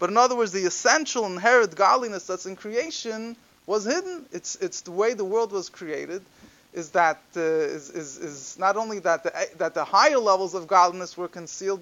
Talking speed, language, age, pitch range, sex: 200 wpm, English, 20-39, 160-225 Hz, male